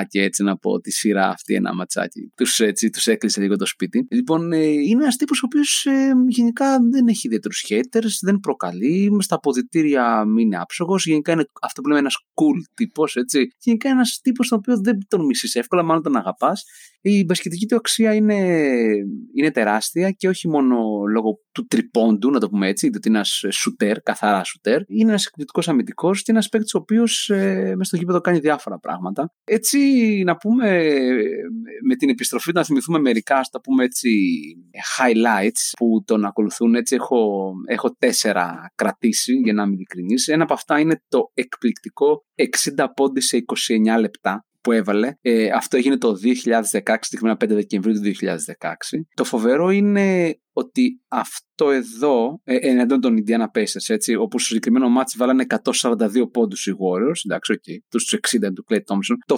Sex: male